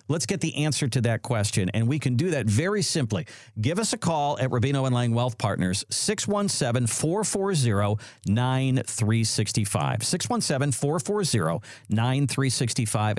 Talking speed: 120 wpm